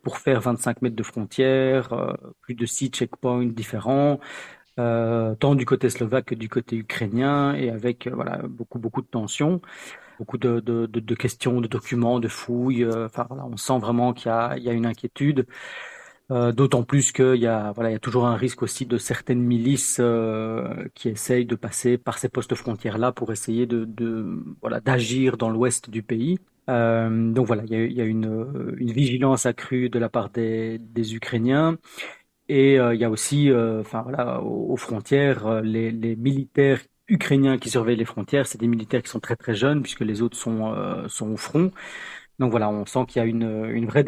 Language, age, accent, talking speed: French, 40-59, French, 205 wpm